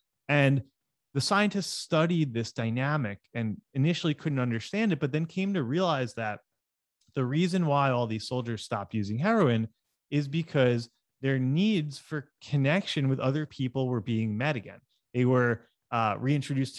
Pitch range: 115-160 Hz